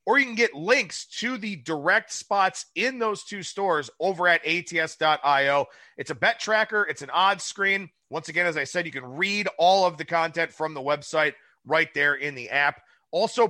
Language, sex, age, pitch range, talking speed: English, male, 30-49, 160-205 Hz, 200 wpm